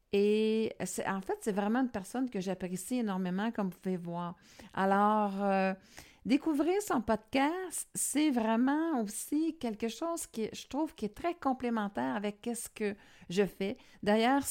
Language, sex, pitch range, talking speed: French, female, 200-260 Hz, 155 wpm